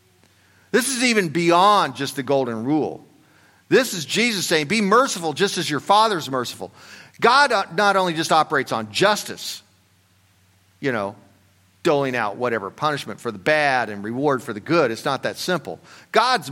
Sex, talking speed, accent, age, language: male, 165 wpm, American, 50-69, English